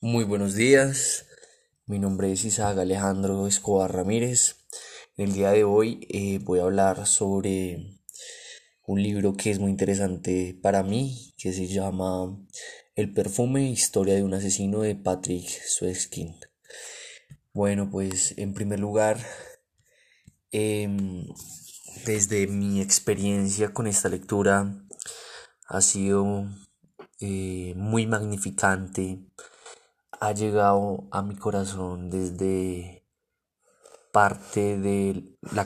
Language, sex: Spanish, male